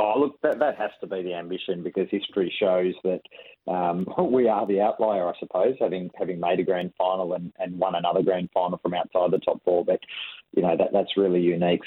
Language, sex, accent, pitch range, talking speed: English, male, Australian, 90-95 Hz, 225 wpm